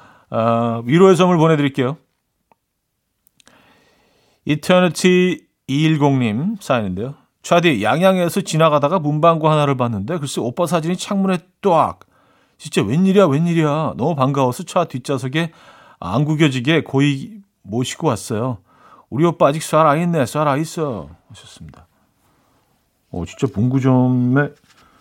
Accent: native